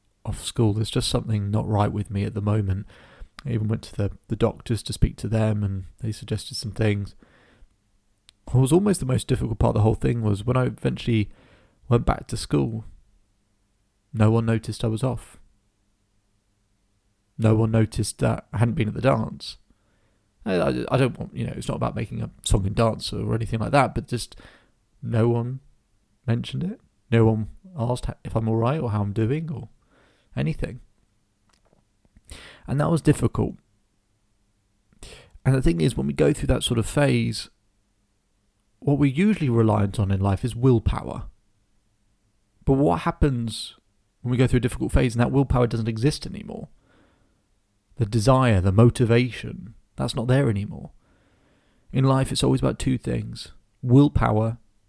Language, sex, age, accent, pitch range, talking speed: English, male, 30-49, British, 100-120 Hz, 170 wpm